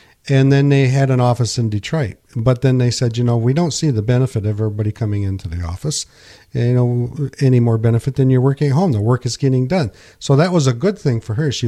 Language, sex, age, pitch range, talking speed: English, male, 50-69, 110-135 Hz, 250 wpm